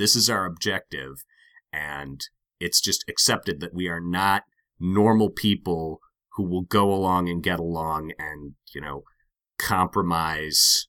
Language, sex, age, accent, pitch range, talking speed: English, male, 30-49, American, 80-105 Hz, 140 wpm